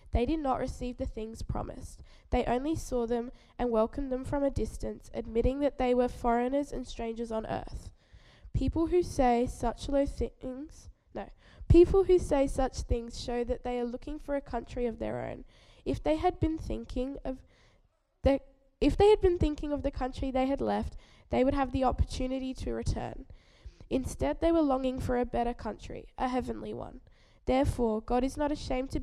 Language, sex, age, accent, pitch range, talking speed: English, female, 10-29, Australian, 235-280 Hz, 185 wpm